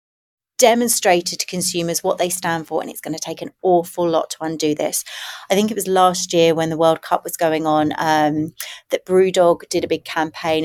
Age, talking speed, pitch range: 30-49, 215 wpm, 165-205 Hz